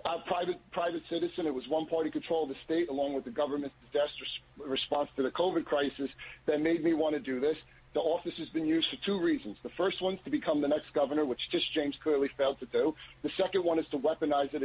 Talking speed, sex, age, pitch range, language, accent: 240 wpm, male, 40-59, 140-155 Hz, English, American